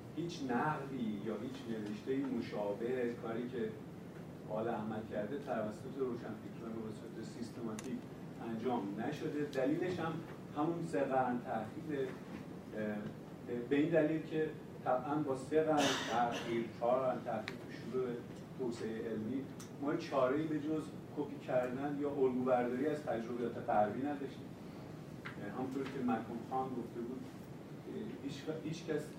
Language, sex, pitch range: Persian, male, 125-150 Hz